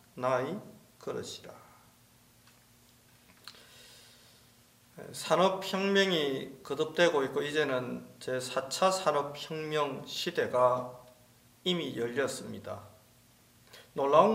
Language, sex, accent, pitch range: Korean, male, native, 135-190 Hz